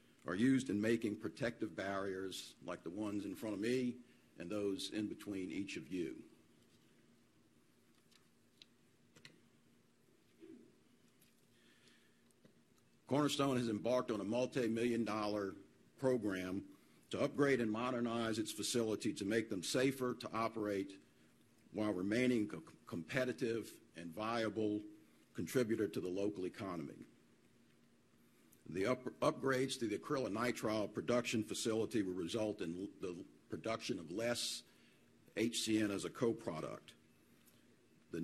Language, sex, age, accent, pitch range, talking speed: English, male, 50-69, American, 100-125 Hz, 110 wpm